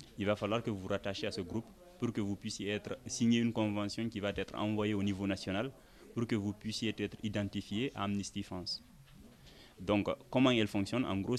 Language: French